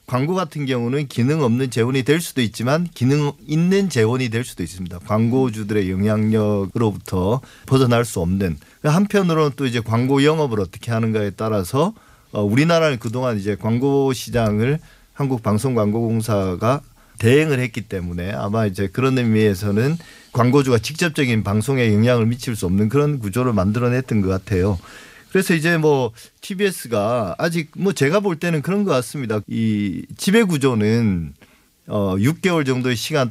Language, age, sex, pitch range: Korean, 40-59, male, 105-145 Hz